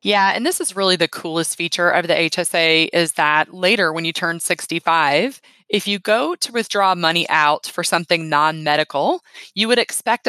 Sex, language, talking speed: female, English, 180 wpm